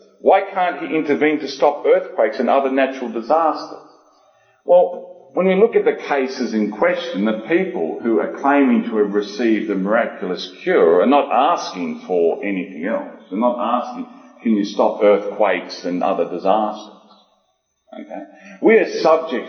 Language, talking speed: English, 155 wpm